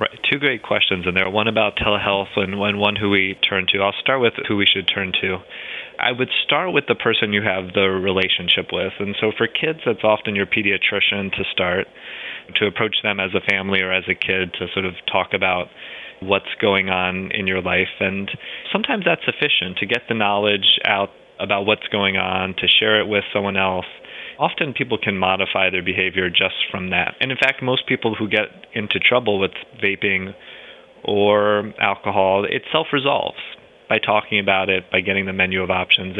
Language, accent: English, American